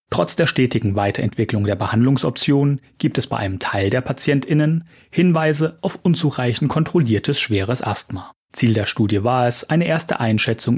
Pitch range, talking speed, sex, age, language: 105-140 Hz, 150 wpm, male, 30-49, German